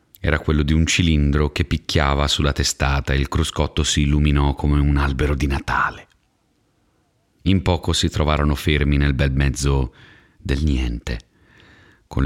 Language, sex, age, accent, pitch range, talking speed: Italian, male, 30-49, native, 70-85 Hz, 145 wpm